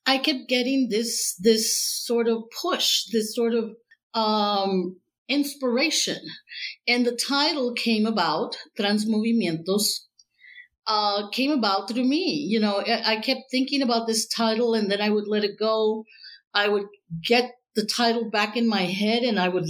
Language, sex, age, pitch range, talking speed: English, female, 50-69, 200-245 Hz, 160 wpm